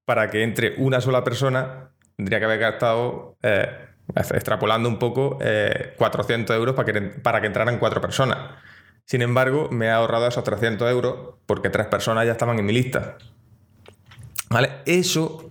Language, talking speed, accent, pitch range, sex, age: Spanish, 165 wpm, Spanish, 105-125 Hz, male, 20-39